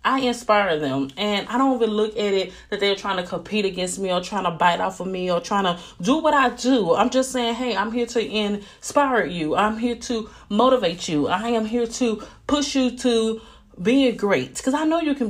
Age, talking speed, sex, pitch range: 30-49, 230 wpm, female, 195-235 Hz